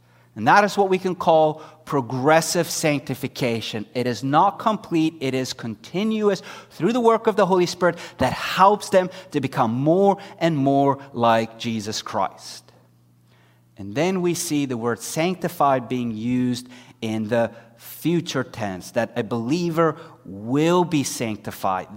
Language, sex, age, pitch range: English, male, 30-49, 115-185 Hz